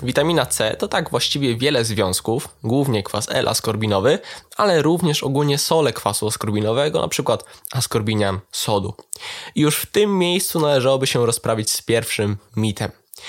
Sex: male